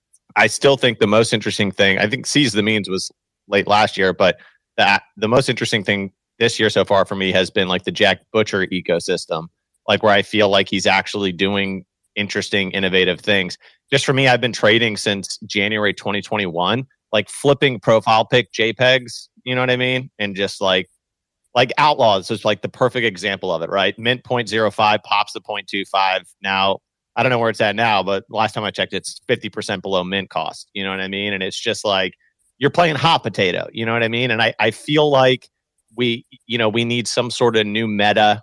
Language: English